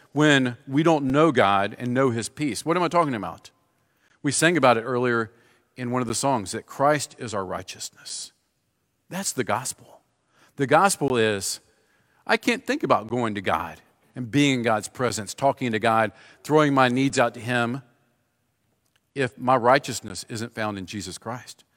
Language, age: English, 50-69